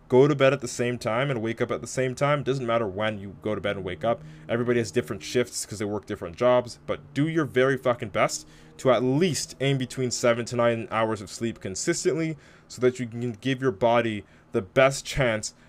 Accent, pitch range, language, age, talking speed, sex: American, 110-130 Hz, English, 20-39, 235 wpm, male